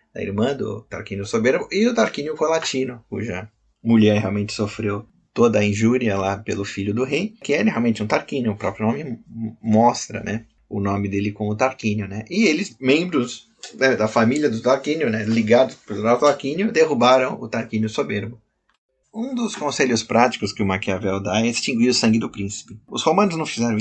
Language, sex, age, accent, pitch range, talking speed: Portuguese, male, 20-39, Brazilian, 105-130 Hz, 180 wpm